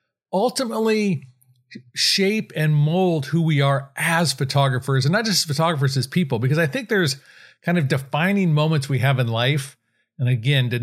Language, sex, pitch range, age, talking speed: English, male, 135-165 Hz, 40-59, 165 wpm